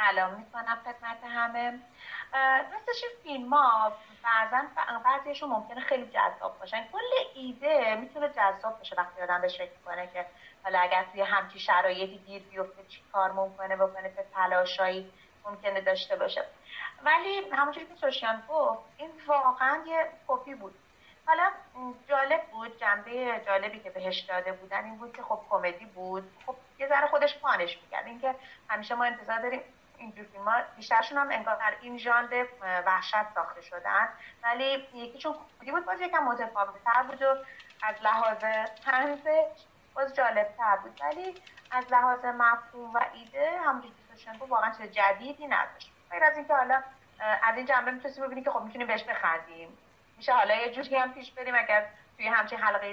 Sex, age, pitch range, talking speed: female, 30-49, 205-275 Hz, 160 wpm